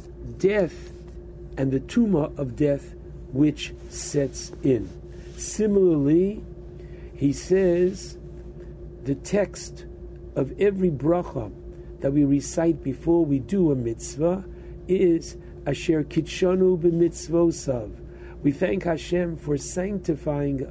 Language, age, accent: English, 60-79, American